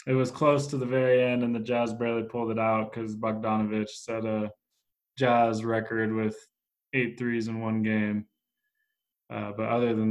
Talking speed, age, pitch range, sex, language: 180 wpm, 20-39, 110-130 Hz, male, English